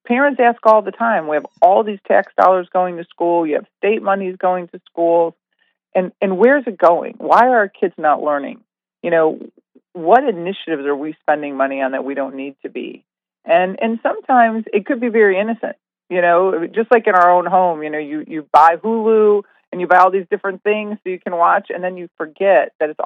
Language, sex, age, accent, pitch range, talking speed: English, female, 40-59, American, 155-205 Hz, 225 wpm